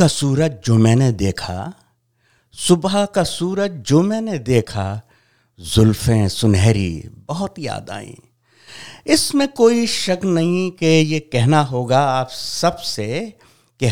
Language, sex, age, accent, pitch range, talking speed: English, male, 60-79, Indian, 110-155 Hz, 115 wpm